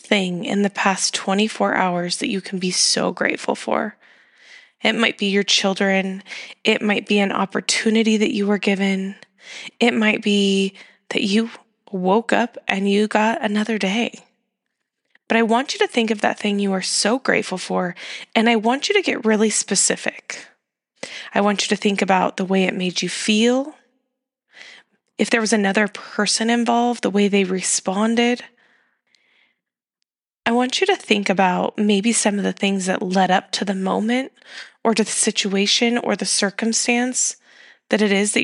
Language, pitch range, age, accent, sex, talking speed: English, 200-240 Hz, 10-29, American, female, 175 wpm